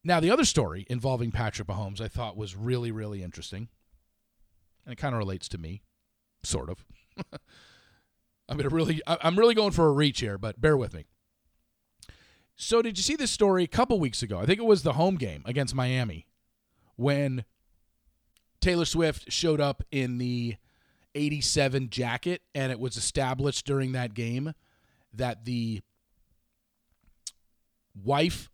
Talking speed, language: 150 wpm, English